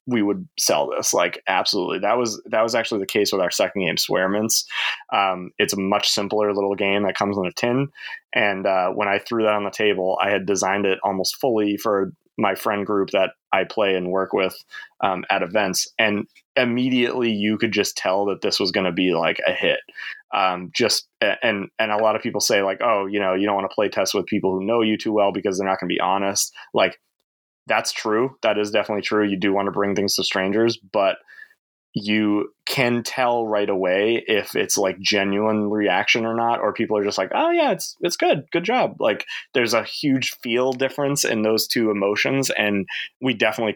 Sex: male